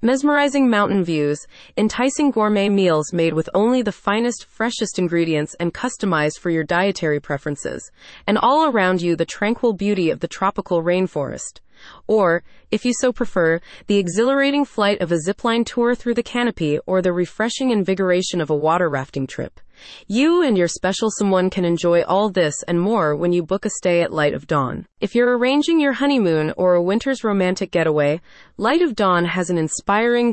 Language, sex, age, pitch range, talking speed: English, female, 30-49, 170-230 Hz, 180 wpm